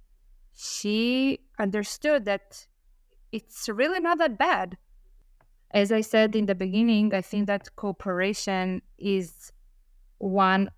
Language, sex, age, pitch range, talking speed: English, female, 20-39, 180-210 Hz, 110 wpm